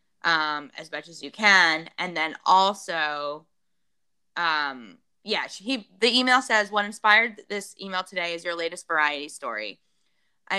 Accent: American